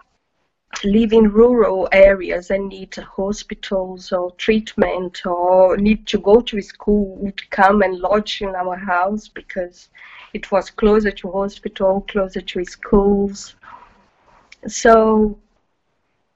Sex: female